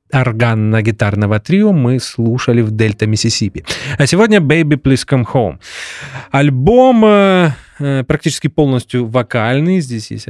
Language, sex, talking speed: Russian, male, 110 wpm